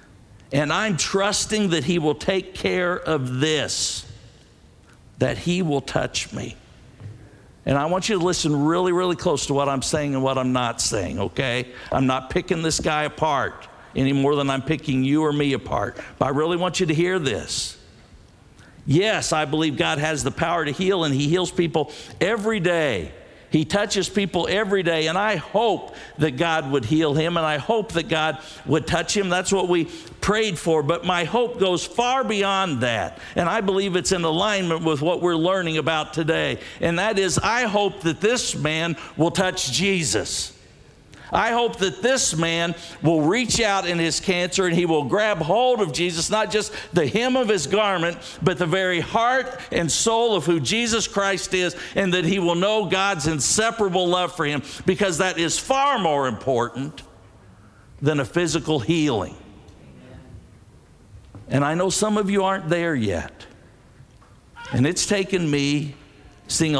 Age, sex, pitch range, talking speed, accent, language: 50-69, male, 150-190 Hz, 180 wpm, American, English